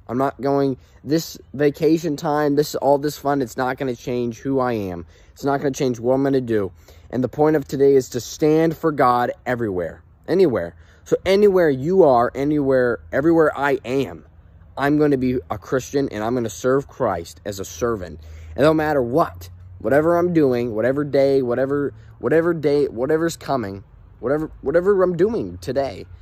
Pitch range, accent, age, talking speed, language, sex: 105-135 Hz, American, 20-39, 175 wpm, English, male